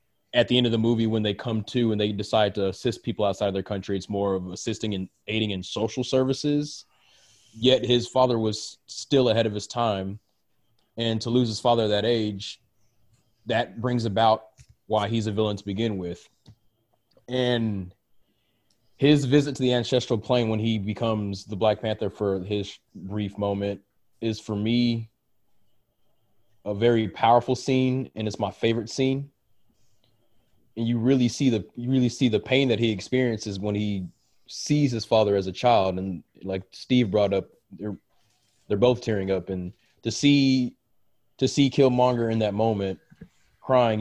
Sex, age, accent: male, 20-39, American